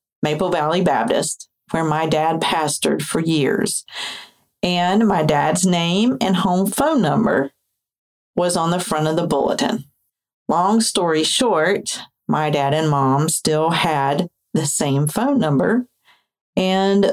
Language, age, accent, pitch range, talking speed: English, 40-59, American, 145-190 Hz, 135 wpm